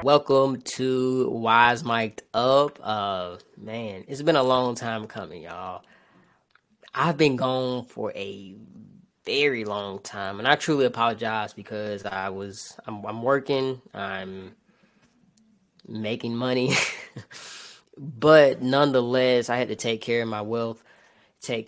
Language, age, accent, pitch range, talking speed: English, 20-39, American, 105-135 Hz, 125 wpm